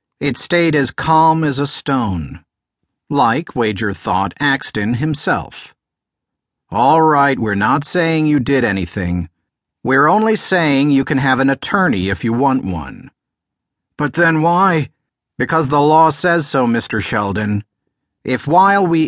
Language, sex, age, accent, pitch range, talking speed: English, male, 50-69, American, 110-155 Hz, 140 wpm